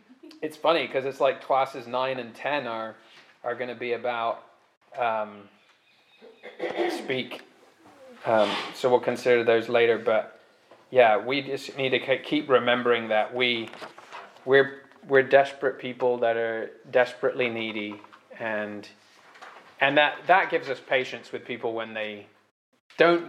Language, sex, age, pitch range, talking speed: English, male, 20-39, 120-155 Hz, 135 wpm